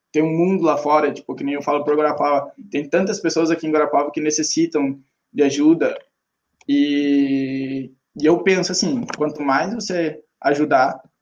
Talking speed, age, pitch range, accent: 165 wpm, 20-39, 150-185 Hz, Brazilian